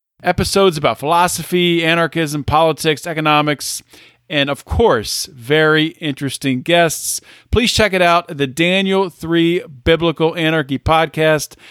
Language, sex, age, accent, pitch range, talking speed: English, male, 40-59, American, 125-160 Hz, 115 wpm